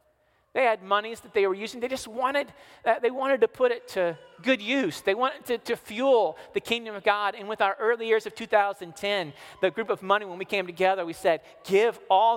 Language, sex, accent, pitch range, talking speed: English, male, American, 185-240 Hz, 230 wpm